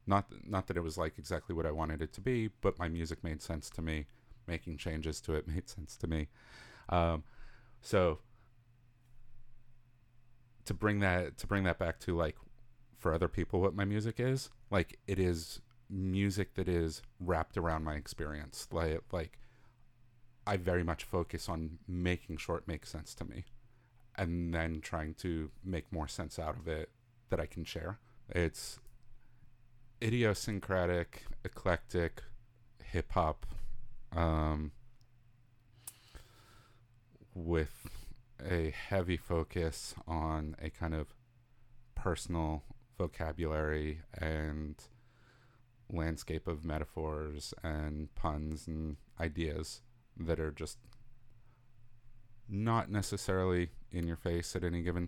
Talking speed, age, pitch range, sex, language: 125 wpm, 40-59, 80-120 Hz, male, English